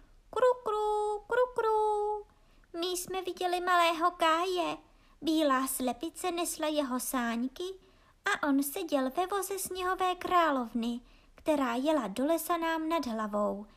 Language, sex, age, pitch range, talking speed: Czech, male, 20-39, 230-335 Hz, 120 wpm